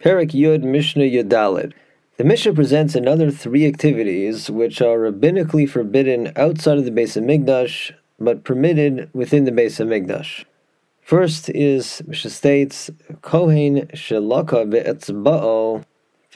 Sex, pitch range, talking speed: male, 115-150 Hz, 115 wpm